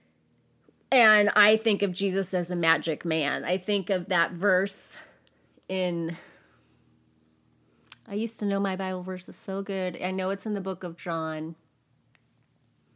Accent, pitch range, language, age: American, 175-225 Hz, English, 30-49